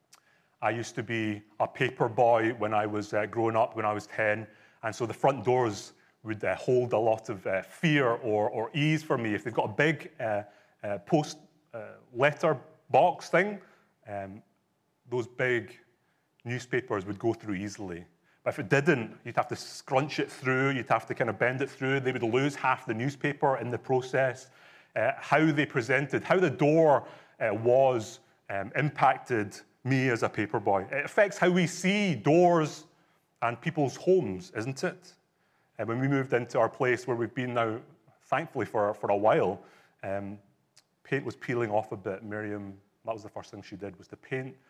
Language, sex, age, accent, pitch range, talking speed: English, male, 30-49, British, 105-145 Hz, 190 wpm